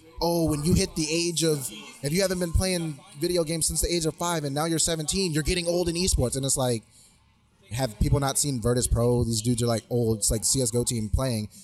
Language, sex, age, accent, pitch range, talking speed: English, male, 20-39, American, 135-165 Hz, 245 wpm